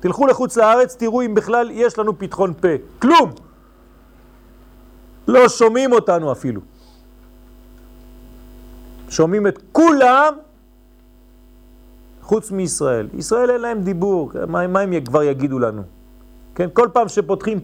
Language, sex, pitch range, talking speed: French, male, 160-245 Hz, 115 wpm